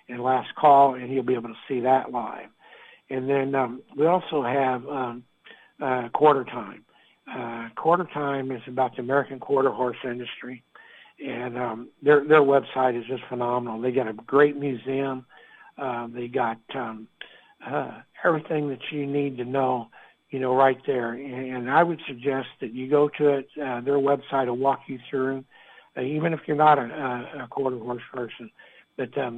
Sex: male